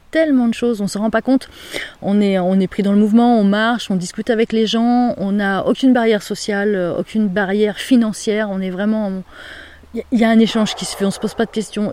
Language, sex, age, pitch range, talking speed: French, female, 30-49, 185-225 Hz, 255 wpm